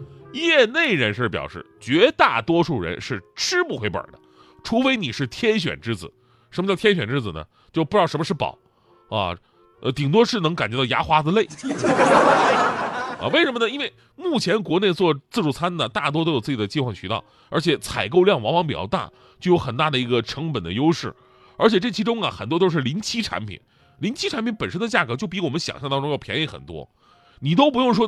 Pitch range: 130-225 Hz